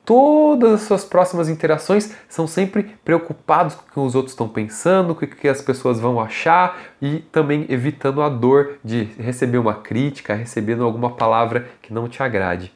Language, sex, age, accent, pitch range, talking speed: Portuguese, male, 20-39, Brazilian, 135-180 Hz, 180 wpm